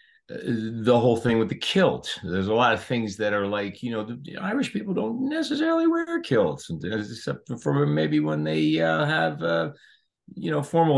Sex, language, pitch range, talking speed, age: male, English, 95-135 Hz, 195 wpm, 40-59